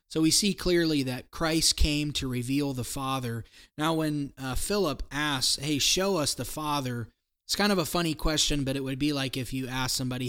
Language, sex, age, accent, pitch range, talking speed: English, male, 20-39, American, 125-150 Hz, 210 wpm